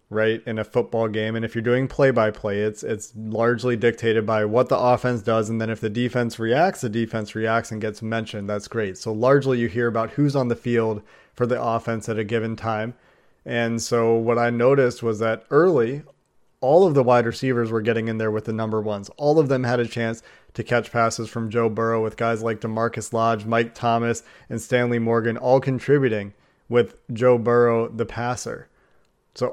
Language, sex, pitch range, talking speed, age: English, male, 115-130 Hz, 200 wpm, 30-49